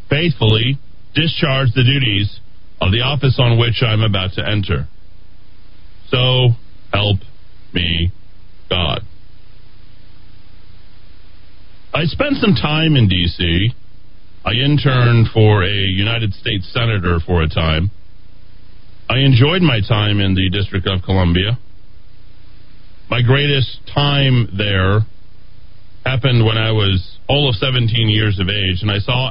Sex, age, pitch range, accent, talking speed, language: male, 40-59, 100-130 Hz, American, 120 wpm, English